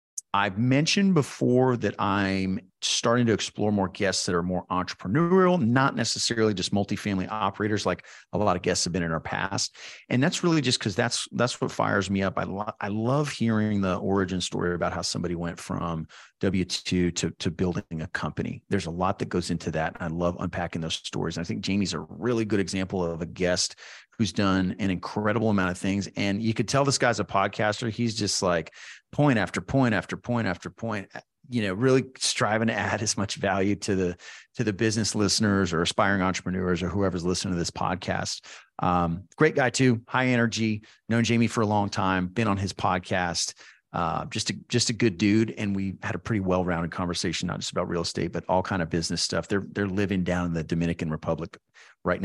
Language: English